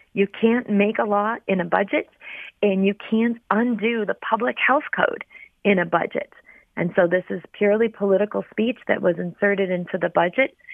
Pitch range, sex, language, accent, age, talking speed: 175-205 Hz, female, English, American, 40-59, 180 wpm